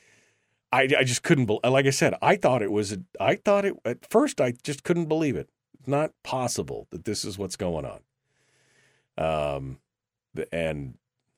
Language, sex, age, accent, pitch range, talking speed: English, male, 40-59, American, 110-150 Hz, 185 wpm